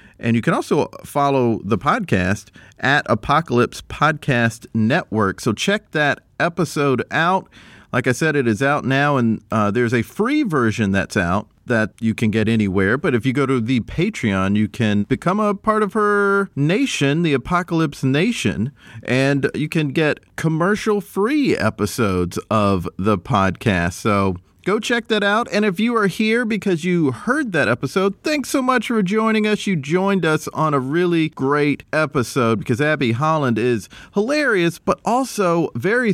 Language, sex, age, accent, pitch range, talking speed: English, male, 40-59, American, 115-190 Hz, 165 wpm